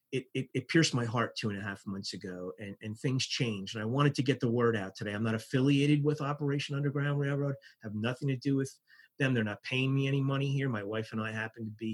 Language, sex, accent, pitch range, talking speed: English, male, American, 110-135 Hz, 265 wpm